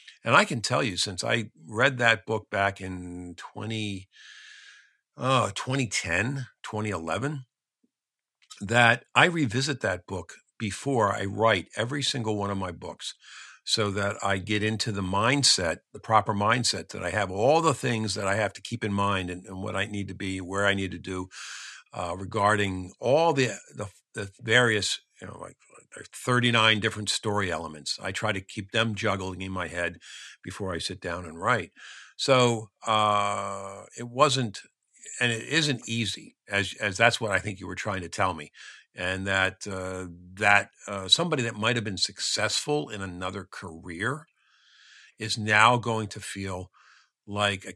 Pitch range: 95-115 Hz